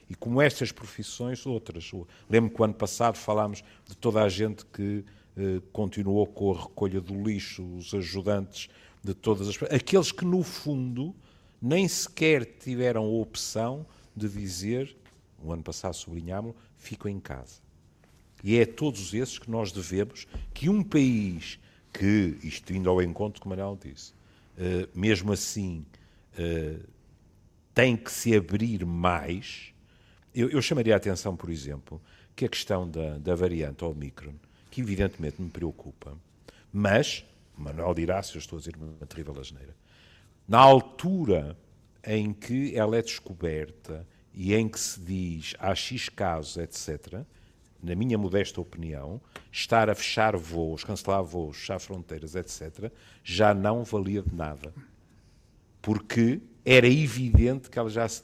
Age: 50-69